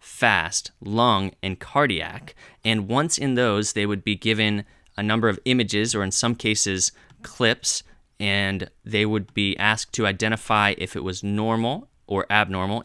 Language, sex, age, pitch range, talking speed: English, male, 20-39, 100-125 Hz, 160 wpm